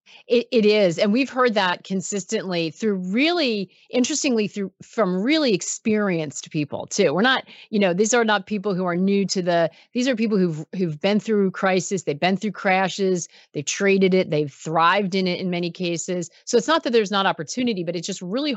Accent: American